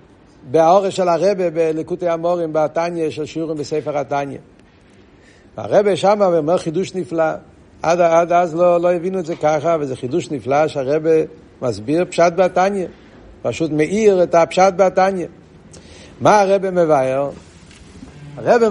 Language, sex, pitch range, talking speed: Hebrew, male, 135-180 Hz, 135 wpm